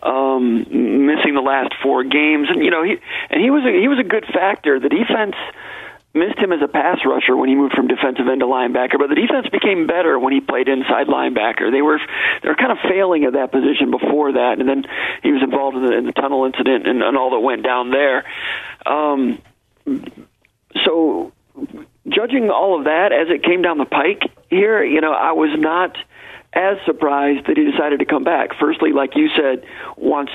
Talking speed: 210 wpm